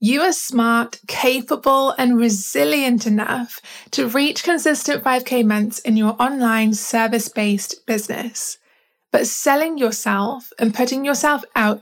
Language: English